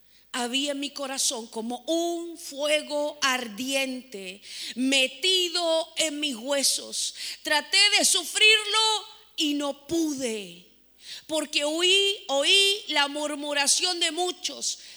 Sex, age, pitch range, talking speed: female, 40-59, 260-335 Hz, 95 wpm